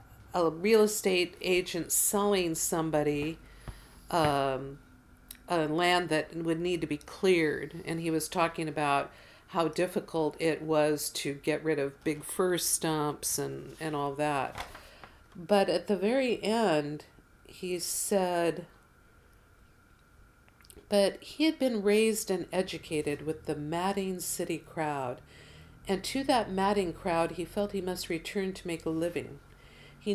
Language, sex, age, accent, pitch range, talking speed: English, female, 50-69, American, 155-185 Hz, 135 wpm